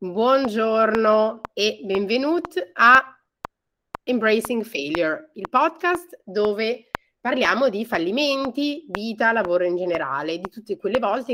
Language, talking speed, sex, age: Italian, 105 wpm, female, 30-49